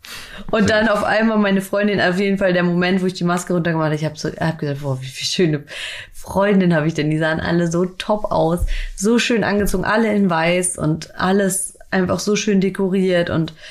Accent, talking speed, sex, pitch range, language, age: German, 215 wpm, female, 175-215 Hz, German, 30-49